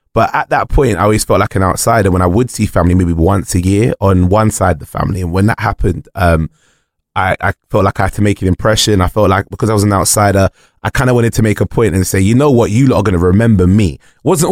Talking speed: 280 wpm